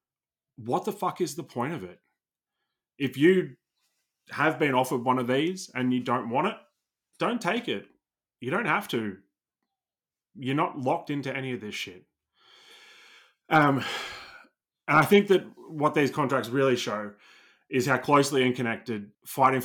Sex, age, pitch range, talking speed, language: male, 20-39, 110-140 Hz, 155 wpm, English